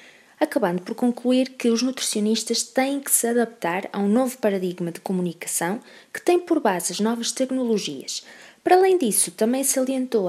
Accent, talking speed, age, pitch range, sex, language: Brazilian, 170 wpm, 20-39, 195-245 Hz, female, Portuguese